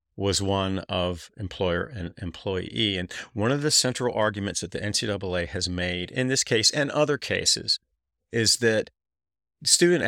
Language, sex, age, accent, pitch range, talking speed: English, male, 40-59, American, 90-115 Hz, 155 wpm